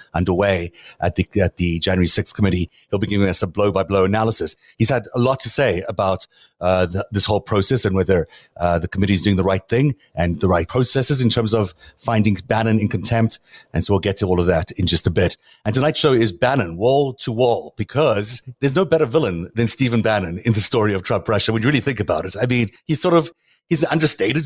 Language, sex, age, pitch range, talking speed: English, male, 30-49, 95-125 Hz, 230 wpm